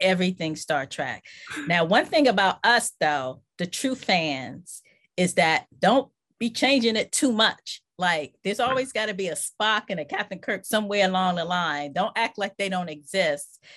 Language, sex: English, female